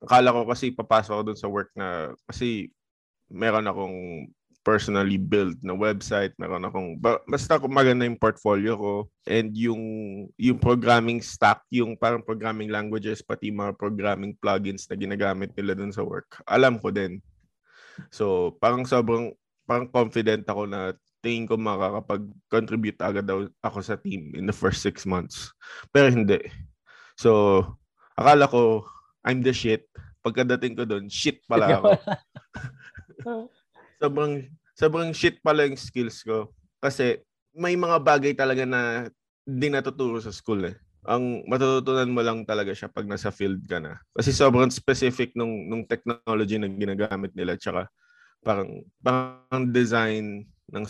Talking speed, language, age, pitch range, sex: 140 wpm, Filipino, 20-39, 105-125 Hz, male